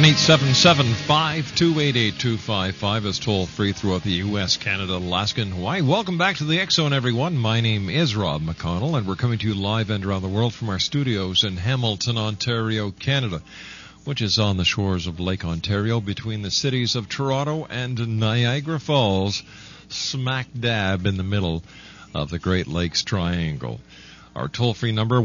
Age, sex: 50-69, male